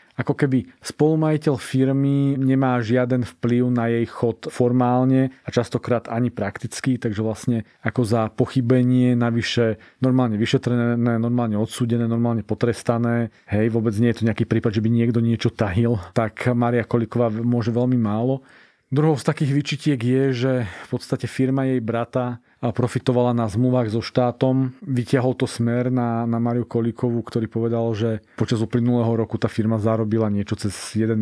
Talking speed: 155 wpm